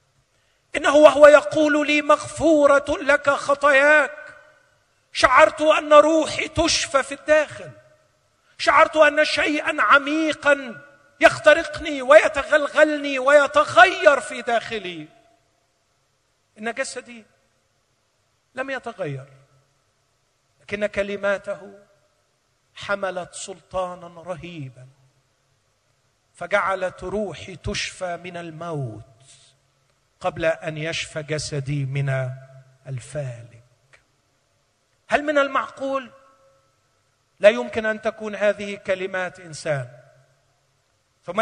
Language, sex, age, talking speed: Arabic, male, 50-69, 75 wpm